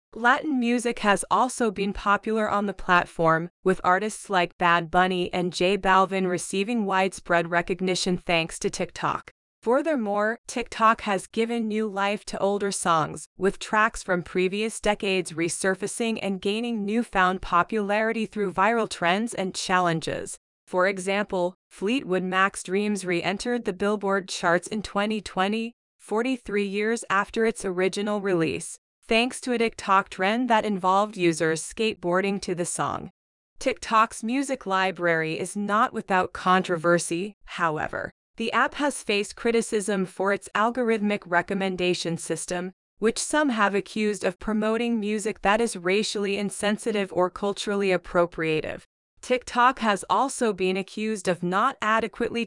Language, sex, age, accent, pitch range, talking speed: English, female, 30-49, American, 185-220 Hz, 135 wpm